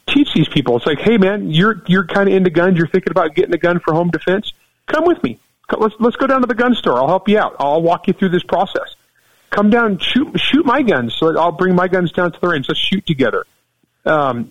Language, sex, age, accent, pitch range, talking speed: English, male, 40-59, American, 155-205 Hz, 255 wpm